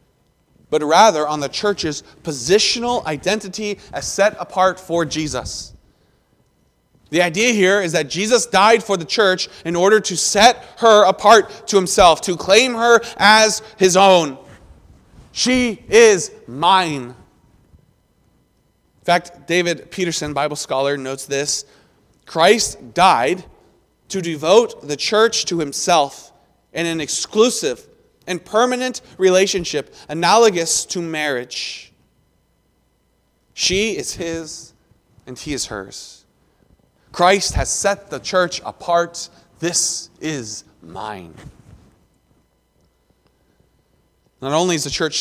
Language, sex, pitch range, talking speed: English, male, 140-205 Hz, 115 wpm